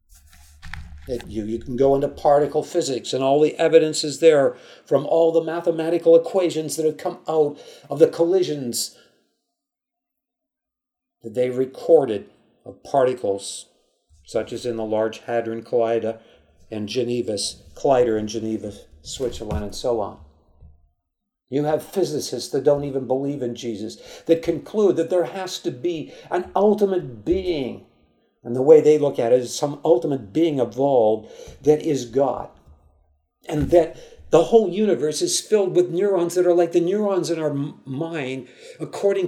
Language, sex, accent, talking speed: English, male, American, 150 wpm